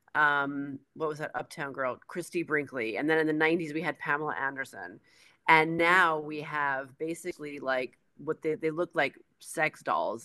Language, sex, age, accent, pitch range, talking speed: English, female, 30-49, American, 140-170 Hz, 175 wpm